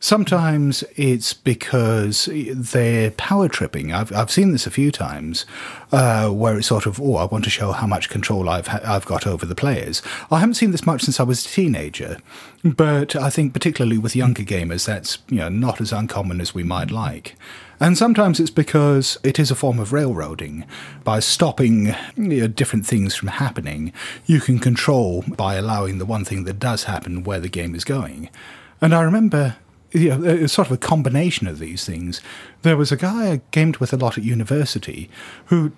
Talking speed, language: 200 wpm, English